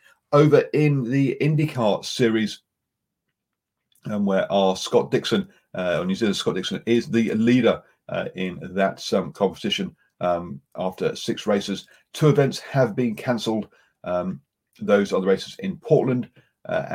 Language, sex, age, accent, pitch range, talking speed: English, male, 40-59, British, 95-135 Hz, 150 wpm